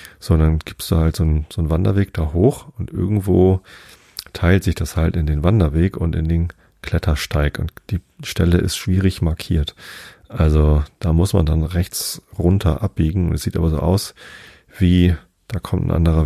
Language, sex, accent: German, male, German